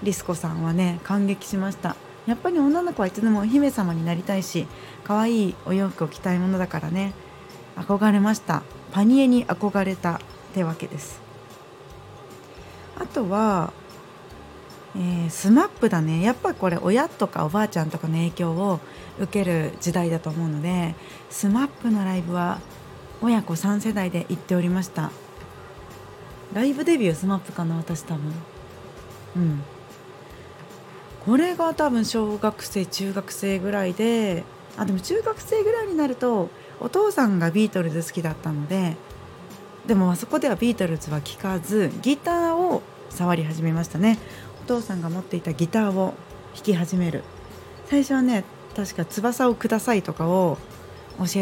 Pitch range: 170-220 Hz